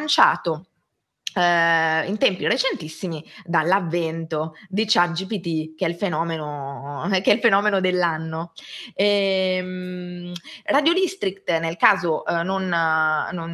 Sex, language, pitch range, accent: female, Italian, 165-200 Hz, native